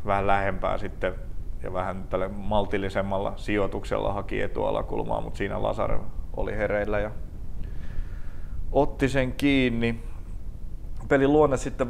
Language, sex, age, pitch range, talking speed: Finnish, male, 30-49, 95-115 Hz, 115 wpm